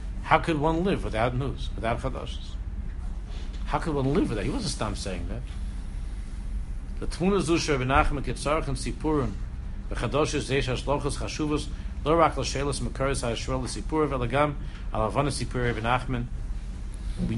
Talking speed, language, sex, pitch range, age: 60 wpm, English, male, 95-140 Hz, 60-79